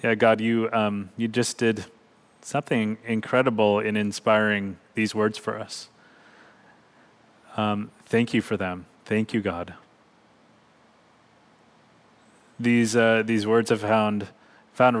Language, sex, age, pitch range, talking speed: English, male, 20-39, 100-115 Hz, 120 wpm